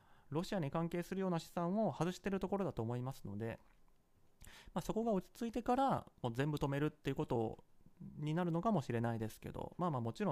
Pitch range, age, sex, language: 130-190 Hz, 30-49, male, Japanese